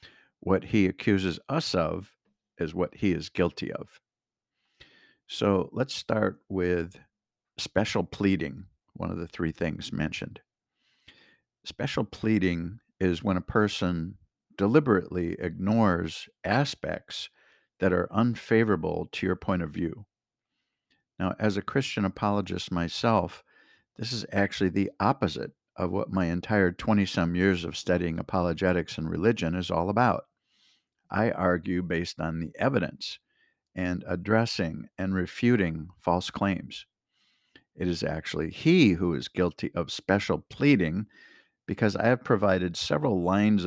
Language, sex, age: English, male, 50-69